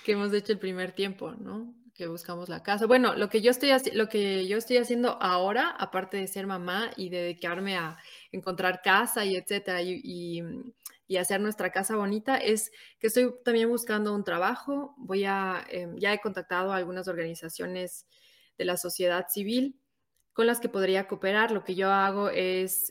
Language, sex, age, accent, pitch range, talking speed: Spanish, female, 20-39, Mexican, 180-220 Hz, 185 wpm